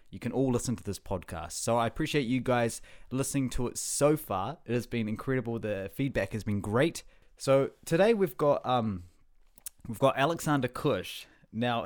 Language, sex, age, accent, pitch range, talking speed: English, male, 20-39, Australian, 100-125 Hz, 180 wpm